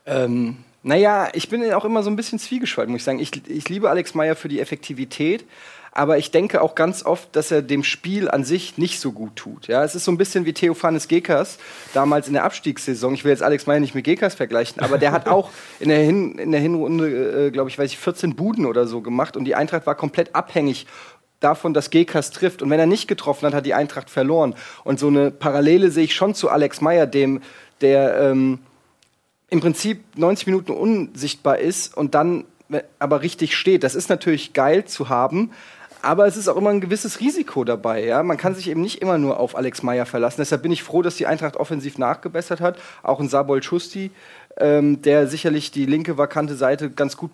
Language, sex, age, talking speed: German, male, 30-49, 220 wpm